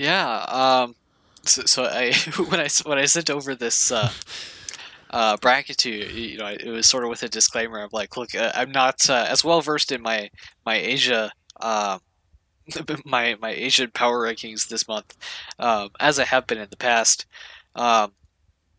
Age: 20-39